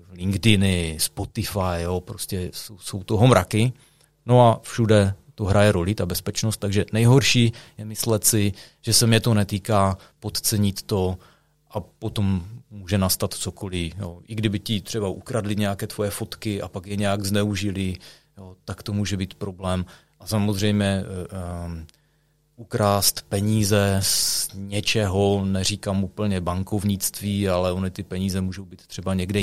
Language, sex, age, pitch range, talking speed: Czech, male, 30-49, 95-115 Hz, 135 wpm